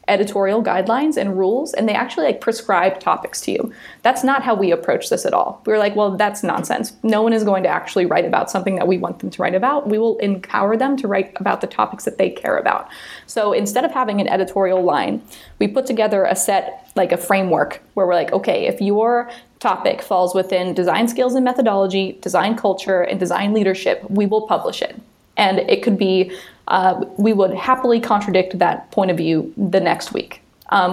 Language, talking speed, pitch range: English, 210 wpm, 190-230 Hz